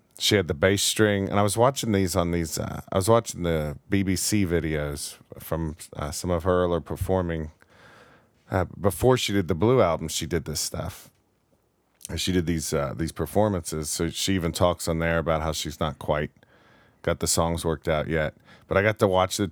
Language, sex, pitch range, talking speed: English, male, 85-100 Hz, 205 wpm